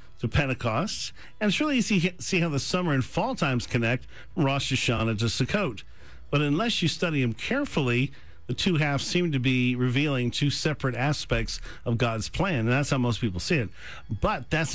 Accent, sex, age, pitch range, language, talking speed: American, male, 50-69, 115-145 Hz, English, 195 wpm